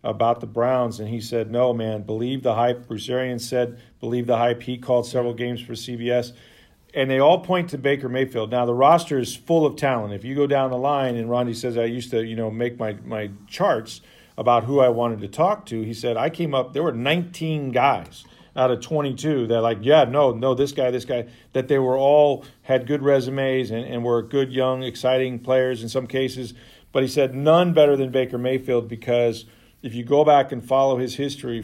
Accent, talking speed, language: American, 220 wpm, English